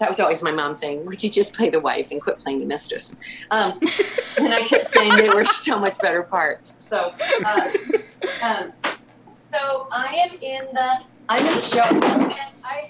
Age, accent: 40-59, American